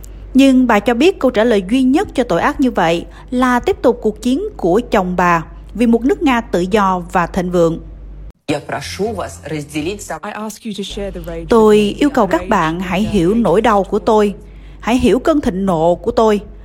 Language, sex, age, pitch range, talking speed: Vietnamese, female, 20-39, 175-250 Hz, 175 wpm